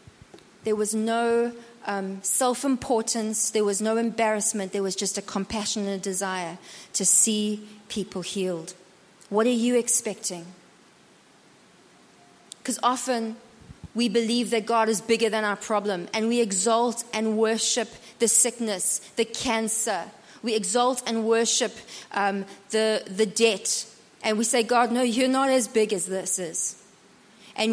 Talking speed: 140 wpm